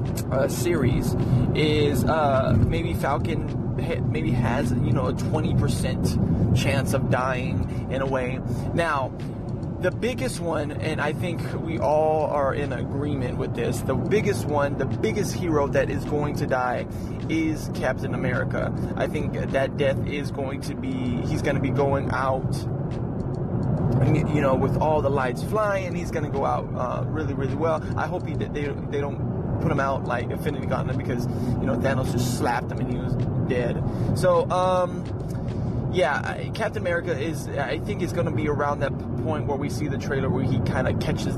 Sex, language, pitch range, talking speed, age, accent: male, English, 120-140 Hz, 180 wpm, 20-39, American